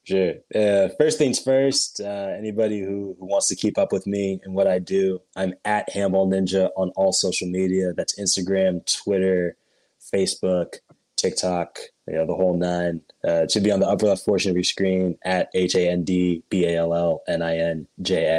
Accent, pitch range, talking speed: American, 85-95 Hz, 165 wpm